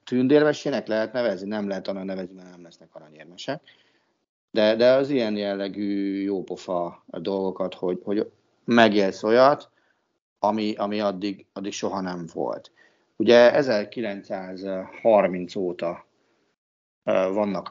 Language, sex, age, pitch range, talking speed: Hungarian, male, 50-69, 95-120 Hz, 115 wpm